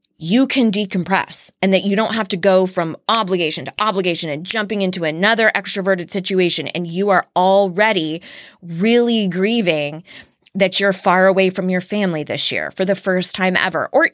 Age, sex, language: 30-49, female, English